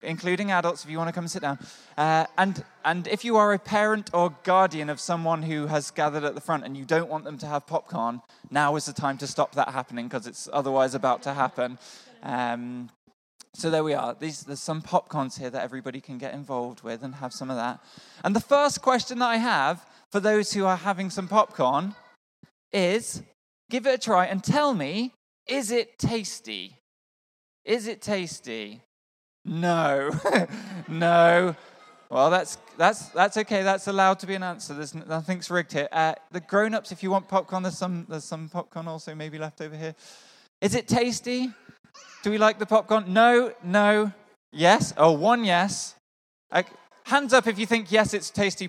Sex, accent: male, British